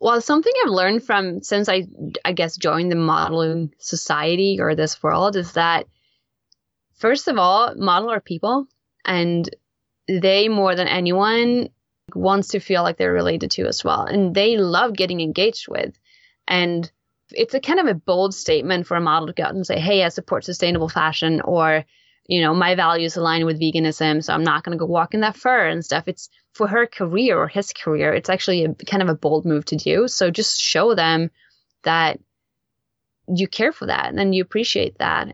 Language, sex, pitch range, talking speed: English, female, 165-215 Hz, 195 wpm